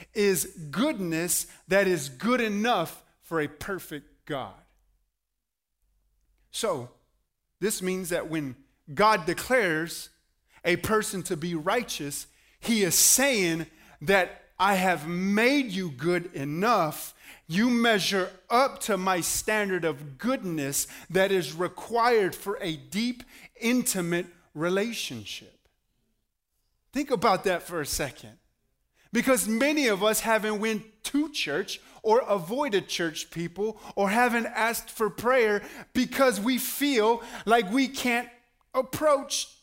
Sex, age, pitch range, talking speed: male, 30-49, 160-220 Hz, 120 wpm